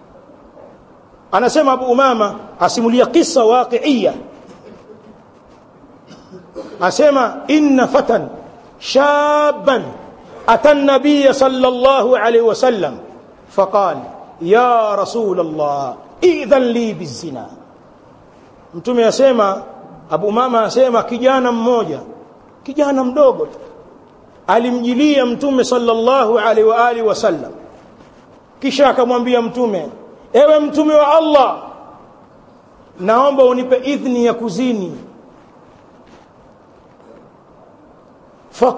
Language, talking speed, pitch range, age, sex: Swahili, 80 wpm, 235-295 Hz, 50-69, male